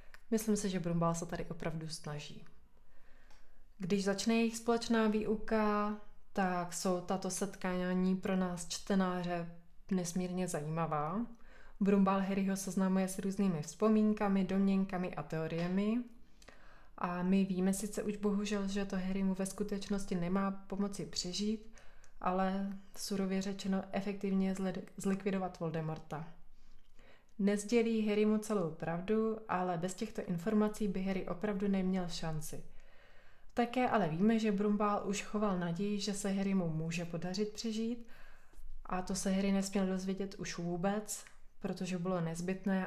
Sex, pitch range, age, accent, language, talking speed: female, 180-210 Hz, 20-39, native, Czech, 125 wpm